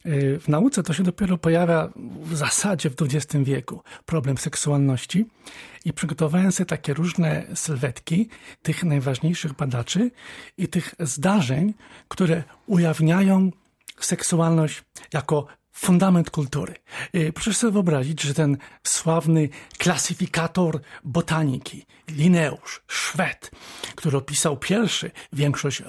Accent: native